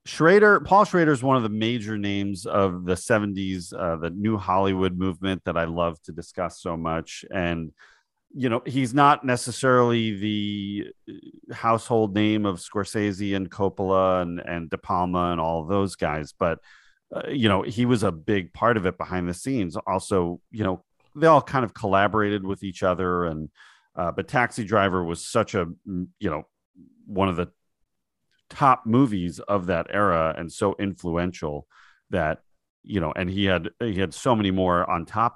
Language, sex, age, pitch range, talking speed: English, male, 40-59, 90-120 Hz, 175 wpm